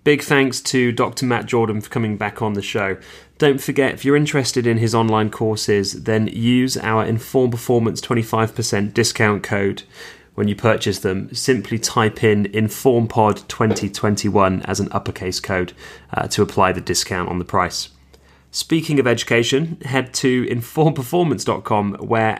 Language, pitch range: English, 105-125 Hz